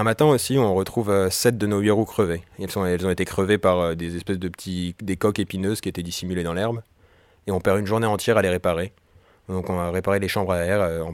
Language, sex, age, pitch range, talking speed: French, male, 30-49, 90-105 Hz, 250 wpm